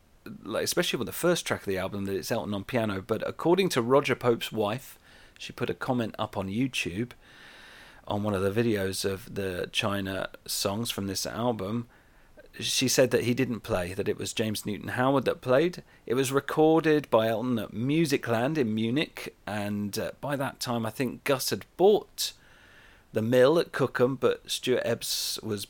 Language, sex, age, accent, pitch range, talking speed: English, male, 40-59, British, 105-130 Hz, 180 wpm